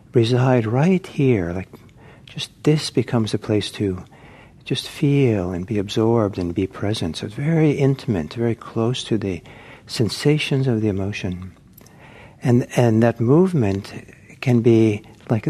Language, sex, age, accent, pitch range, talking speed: English, male, 60-79, American, 110-140 Hz, 145 wpm